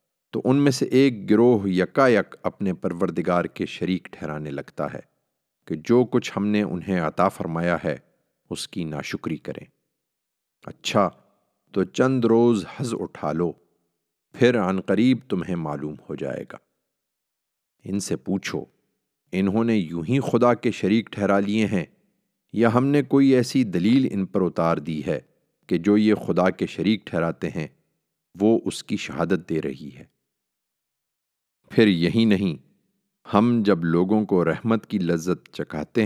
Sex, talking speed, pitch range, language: male, 150 wpm, 85-115 Hz, Urdu